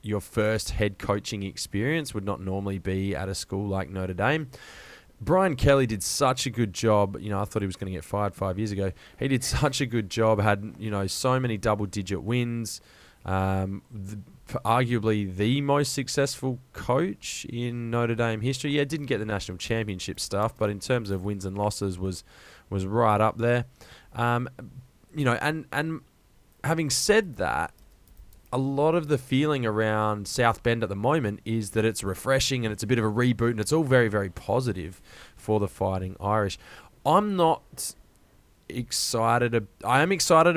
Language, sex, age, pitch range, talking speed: English, male, 20-39, 100-130 Hz, 185 wpm